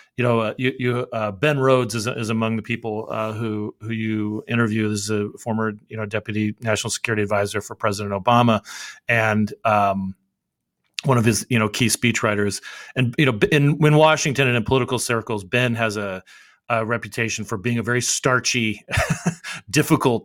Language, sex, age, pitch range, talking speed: English, male, 30-49, 105-125 Hz, 180 wpm